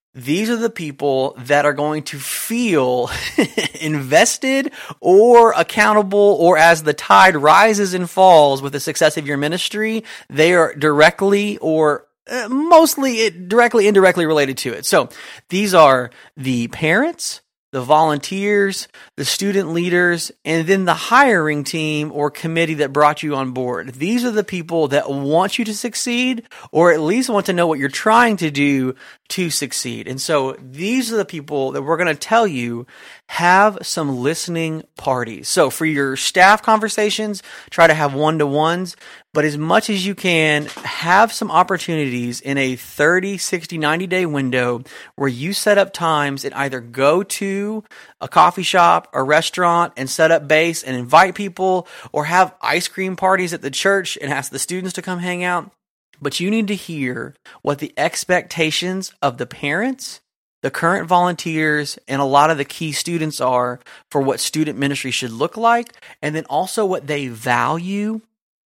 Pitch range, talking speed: 145-200 Hz, 165 wpm